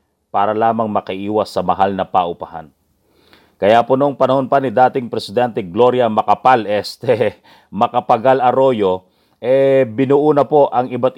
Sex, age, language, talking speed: male, 40-59, English, 125 wpm